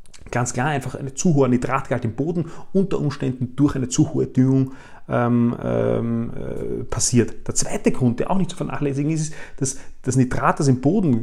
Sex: male